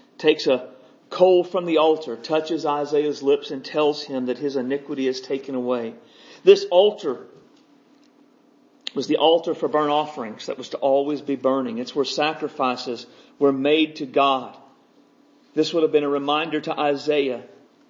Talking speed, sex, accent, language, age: 160 wpm, male, American, English, 50-69